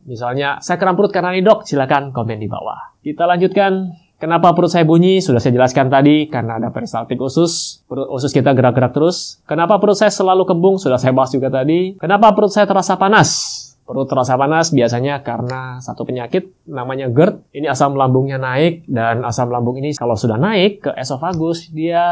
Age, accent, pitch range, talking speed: 20-39, native, 130-170 Hz, 185 wpm